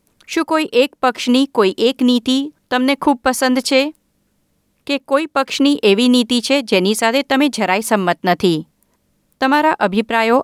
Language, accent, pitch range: Gujarati, native, 200-275 Hz